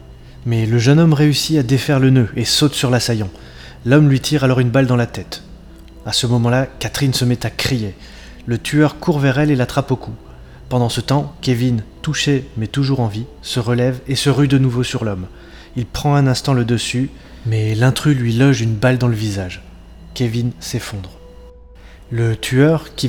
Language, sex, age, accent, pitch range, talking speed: French, male, 20-39, French, 110-135 Hz, 200 wpm